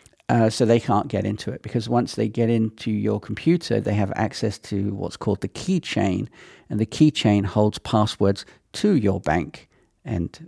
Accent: British